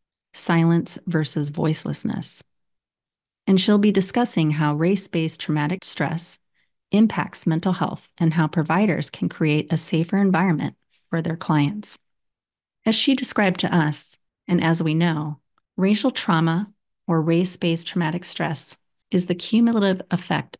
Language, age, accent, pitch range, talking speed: English, 30-49, American, 155-185 Hz, 130 wpm